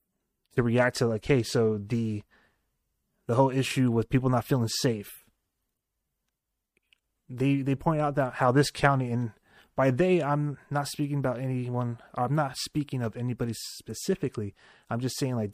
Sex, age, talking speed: male, 30-49, 160 wpm